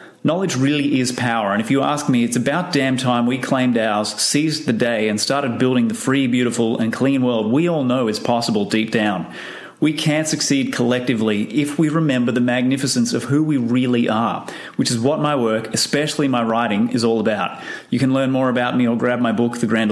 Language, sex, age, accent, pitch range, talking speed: English, male, 30-49, Australian, 120-140 Hz, 215 wpm